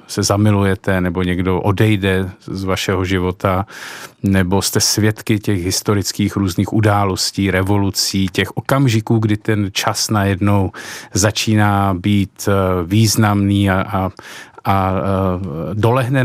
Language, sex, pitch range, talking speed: Czech, male, 100-110 Hz, 105 wpm